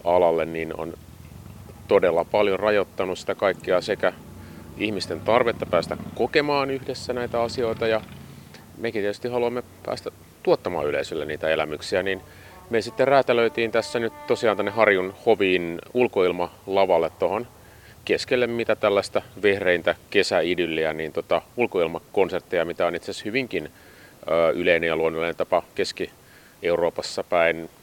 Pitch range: 80-115 Hz